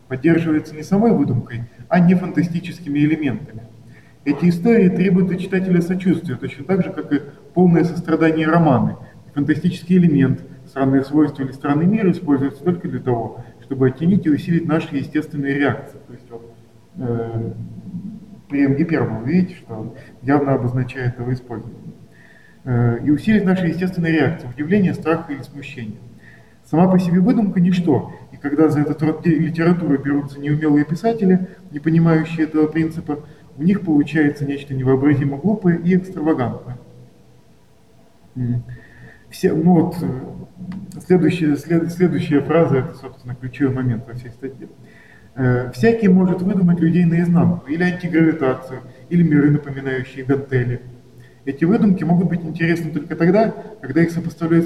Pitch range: 135-175 Hz